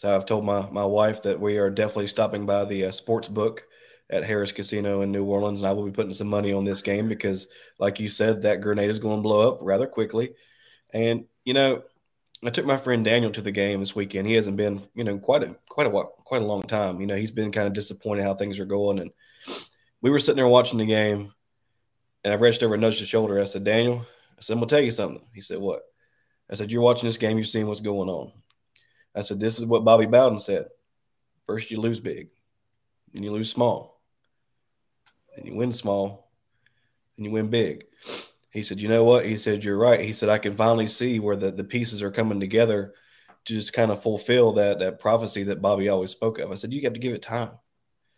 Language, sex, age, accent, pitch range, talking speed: English, male, 20-39, American, 100-115 Hz, 240 wpm